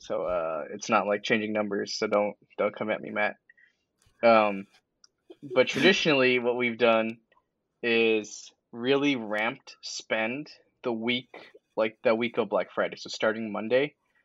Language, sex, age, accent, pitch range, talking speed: English, male, 10-29, American, 110-125 Hz, 145 wpm